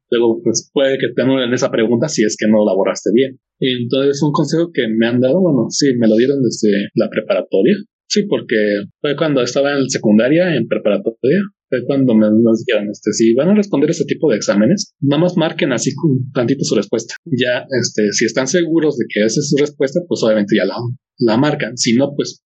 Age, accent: 30-49, Mexican